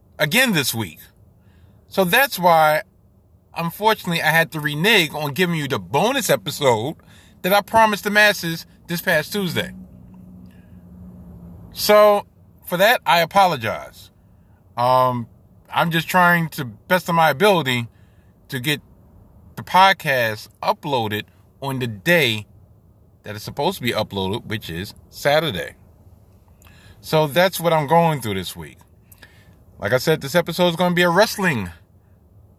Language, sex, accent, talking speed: English, male, American, 140 wpm